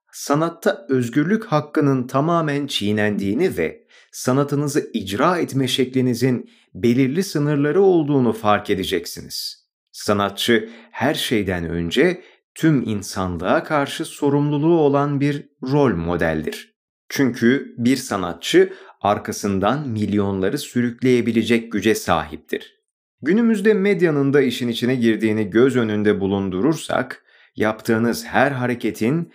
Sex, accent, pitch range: male, native, 110-145 Hz